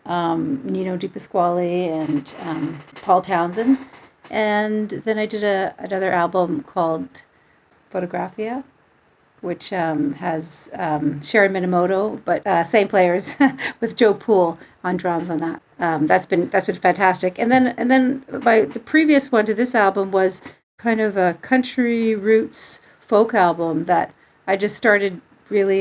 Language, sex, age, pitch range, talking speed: English, female, 40-59, 170-210 Hz, 150 wpm